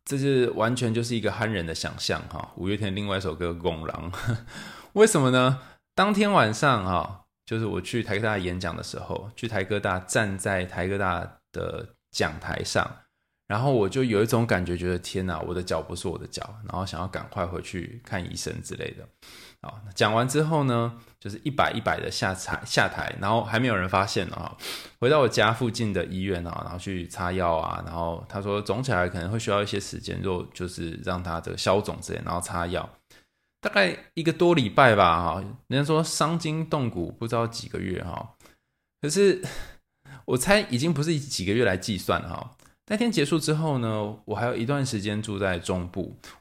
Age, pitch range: 20-39, 90-125 Hz